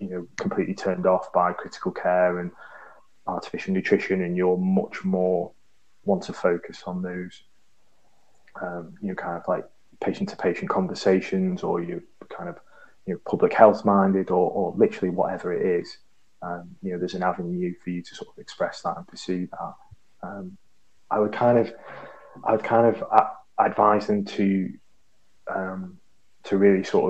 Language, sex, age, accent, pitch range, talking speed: English, male, 20-39, British, 90-100 Hz, 165 wpm